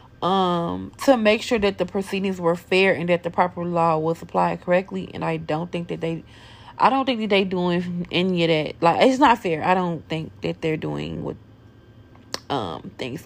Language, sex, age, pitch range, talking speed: English, female, 30-49, 145-185 Hz, 205 wpm